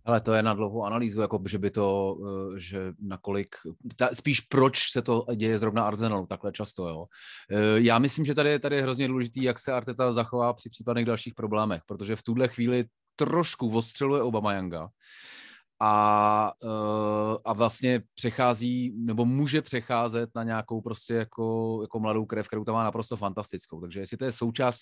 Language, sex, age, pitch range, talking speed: Czech, male, 30-49, 105-120 Hz, 170 wpm